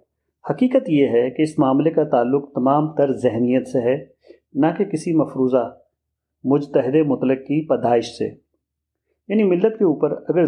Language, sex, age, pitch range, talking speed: Urdu, male, 40-59, 130-160 Hz, 155 wpm